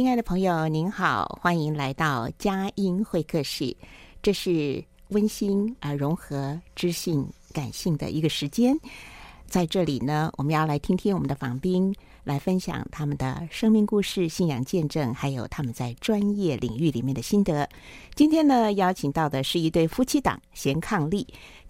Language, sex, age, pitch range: Chinese, female, 50-69, 140-190 Hz